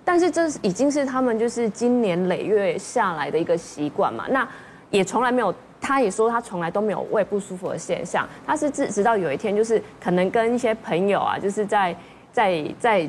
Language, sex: Chinese, female